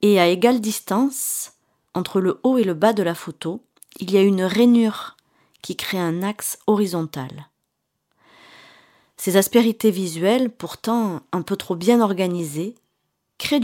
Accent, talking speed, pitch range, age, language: French, 145 wpm, 165-220 Hz, 40-59, French